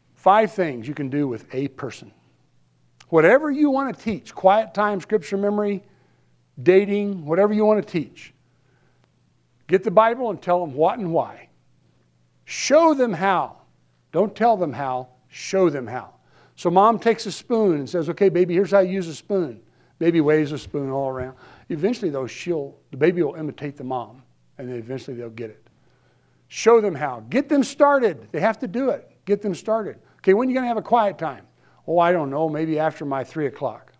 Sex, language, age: male, English, 60-79